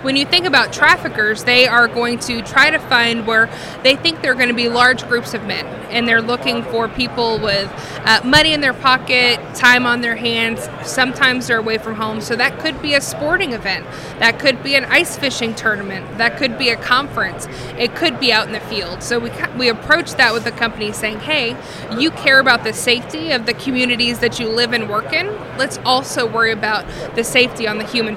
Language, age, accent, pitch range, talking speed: English, 20-39, American, 220-255 Hz, 215 wpm